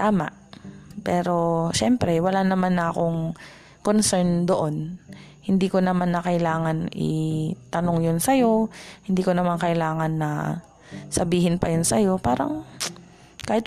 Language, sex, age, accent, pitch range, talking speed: Filipino, female, 20-39, native, 160-185 Hz, 125 wpm